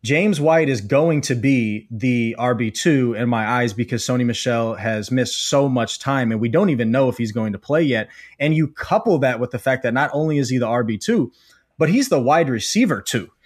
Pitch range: 120-155 Hz